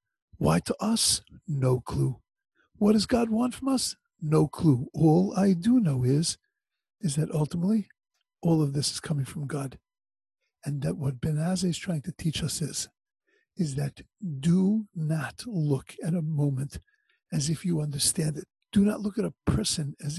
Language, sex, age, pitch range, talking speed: English, male, 50-69, 150-215 Hz, 170 wpm